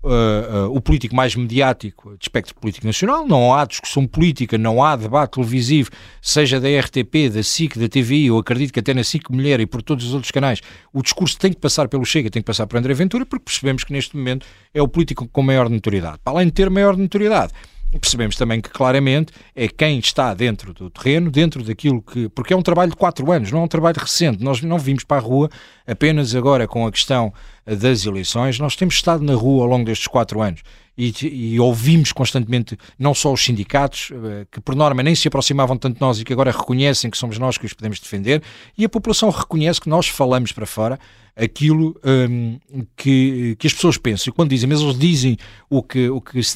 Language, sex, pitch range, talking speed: Portuguese, male, 115-150 Hz, 220 wpm